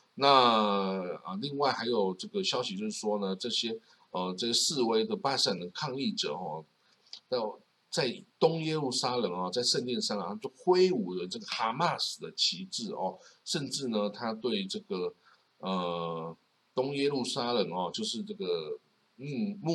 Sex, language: male, Chinese